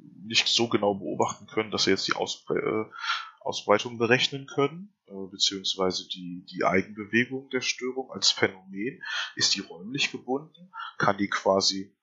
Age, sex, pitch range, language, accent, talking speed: 20-39, male, 100-145 Hz, German, German, 150 wpm